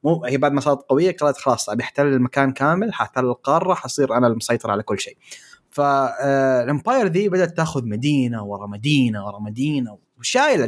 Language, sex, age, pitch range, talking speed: Arabic, male, 20-39, 130-185 Hz, 165 wpm